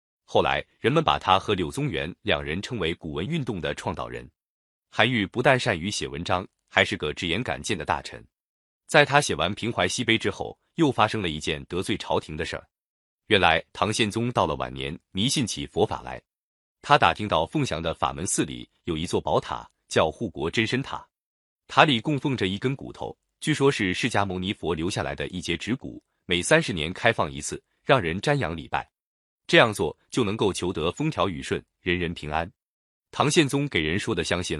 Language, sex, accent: Chinese, male, native